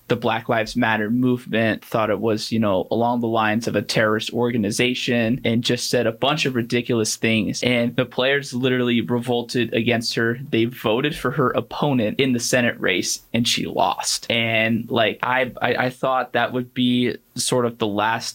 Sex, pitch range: male, 115-145 Hz